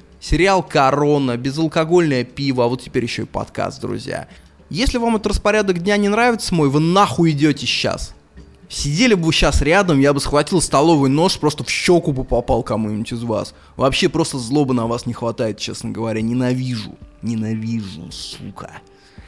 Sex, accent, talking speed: male, native, 165 wpm